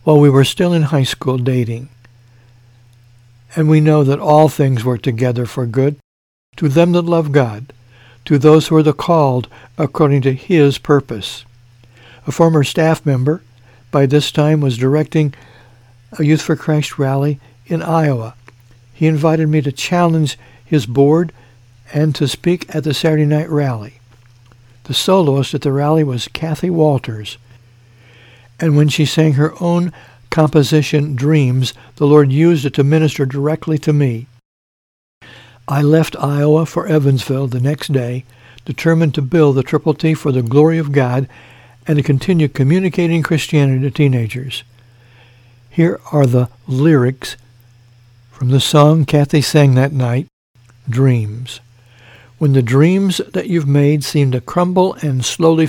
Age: 60-79